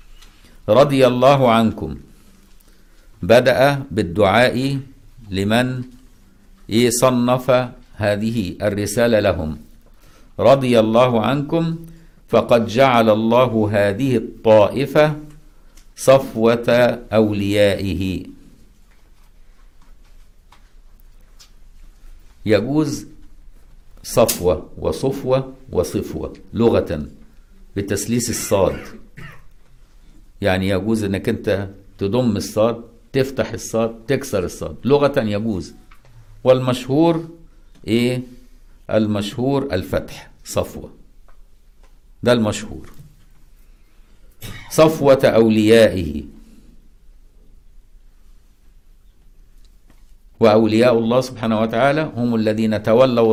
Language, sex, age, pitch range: Arabic, male, 60-79, 100-125 Hz